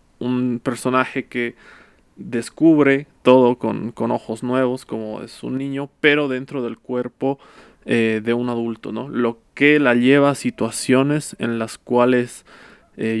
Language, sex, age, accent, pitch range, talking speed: Spanish, male, 20-39, Mexican, 115-130 Hz, 145 wpm